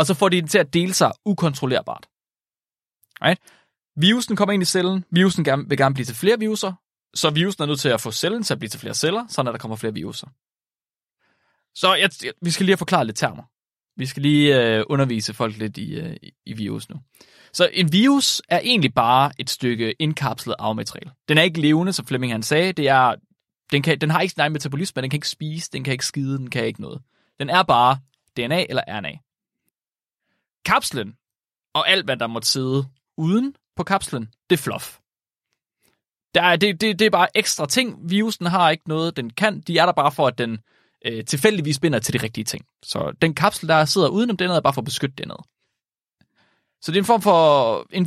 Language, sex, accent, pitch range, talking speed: Danish, male, native, 135-190 Hz, 215 wpm